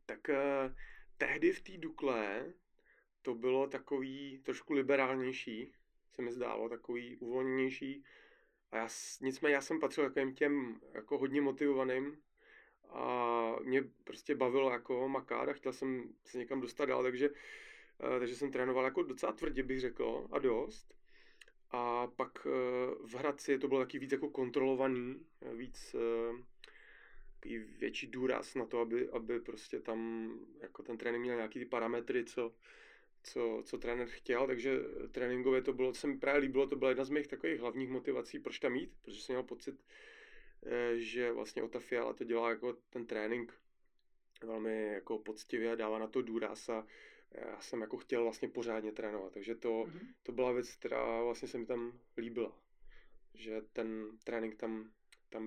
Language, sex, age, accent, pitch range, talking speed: Czech, male, 30-49, native, 115-135 Hz, 155 wpm